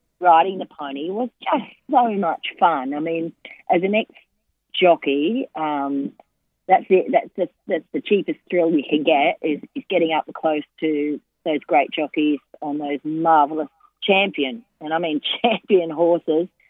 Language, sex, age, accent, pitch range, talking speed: English, female, 40-59, Australian, 155-190 Hz, 155 wpm